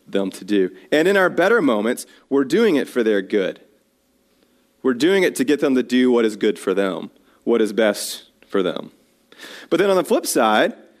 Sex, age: male, 30-49